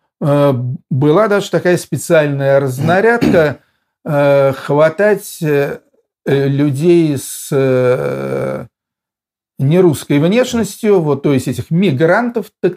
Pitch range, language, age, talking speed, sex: 140-185 Hz, Russian, 50-69, 75 wpm, male